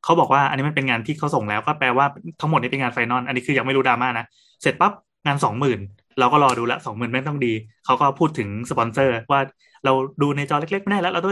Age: 20-39